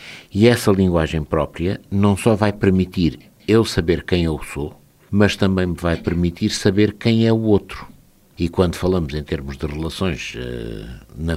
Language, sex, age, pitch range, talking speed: Portuguese, male, 60-79, 90-115 Hz, 170 wpm